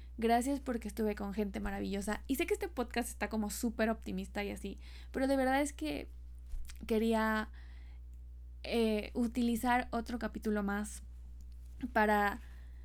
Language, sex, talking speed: Spanish, female, 135 wpm